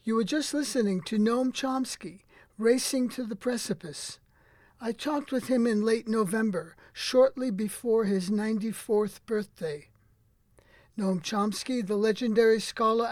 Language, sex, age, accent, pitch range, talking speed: English, male, 50-69, American, 200-235 Hz, 130 wpm